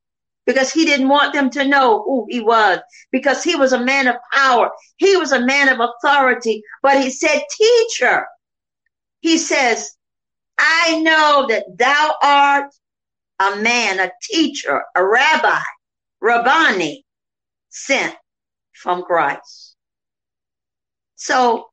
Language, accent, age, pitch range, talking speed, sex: English, American, 50-69, 245-335 Hz, 125 wpm, female